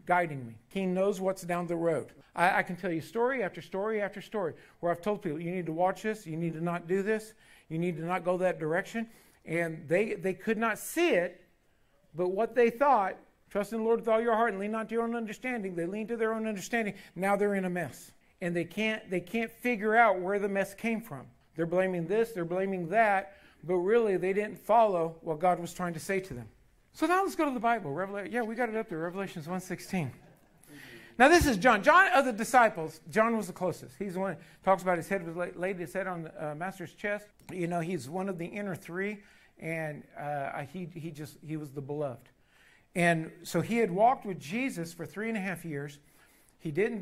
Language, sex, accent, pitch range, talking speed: English, male, American, 165-215 Hz, 235 wpm